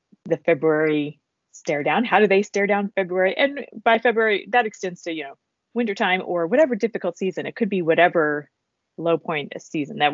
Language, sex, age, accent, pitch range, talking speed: English, female, 30-49, American, 155-185 Hz, 195 wpm